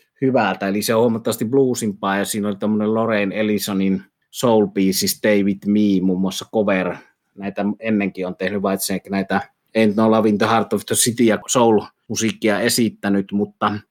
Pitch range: 100-115 Hz